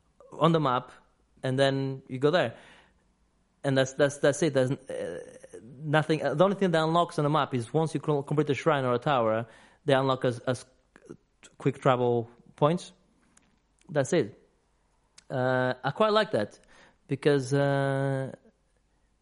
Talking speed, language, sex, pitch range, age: 150 wpm, English, male, 125-155 Hz, 30-49